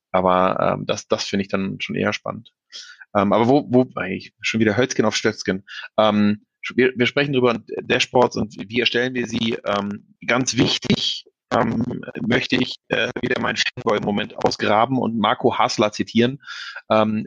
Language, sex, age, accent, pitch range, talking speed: German, male, 30-49, German, 110-125 Hz, 165 wpm